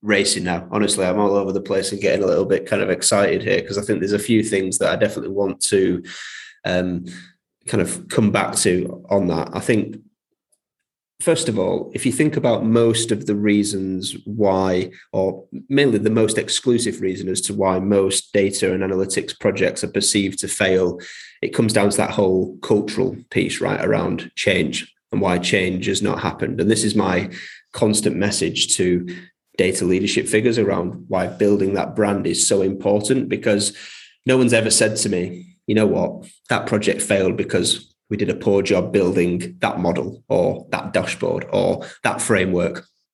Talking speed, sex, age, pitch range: 185 wpm, male, 20-39, 95-105 Hz